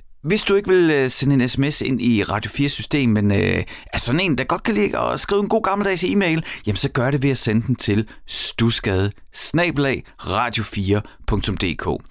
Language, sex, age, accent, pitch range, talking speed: Danish, male, 30-49, native, 110-150 Hz, 185 wpm